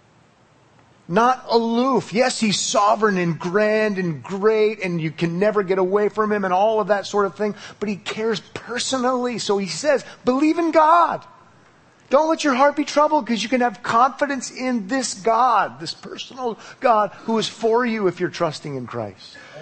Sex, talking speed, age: male, 185 wpm, 40-59